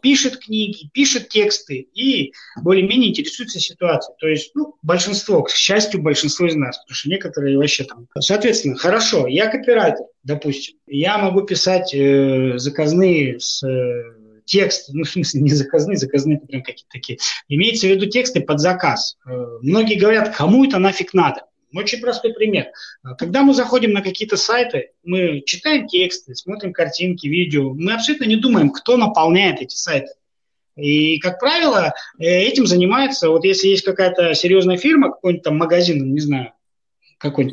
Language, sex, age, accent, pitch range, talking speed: Russian, male, 20-39, native, 145-210 Hz, 155 wpm